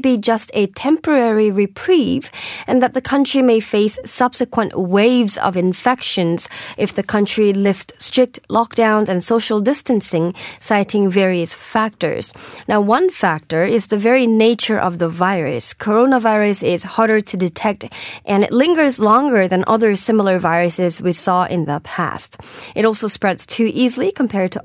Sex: female